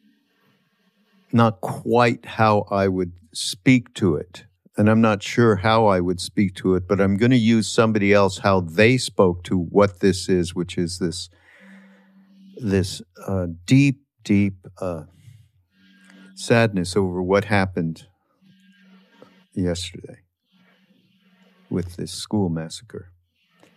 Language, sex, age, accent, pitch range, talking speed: English, male, 50-69, American, 95-125 Hz, 125 wpm